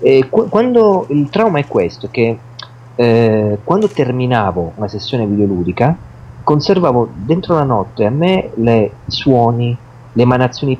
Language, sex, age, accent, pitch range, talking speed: Italian, male, 40-59, native, 115-150 Hz, 130 wpm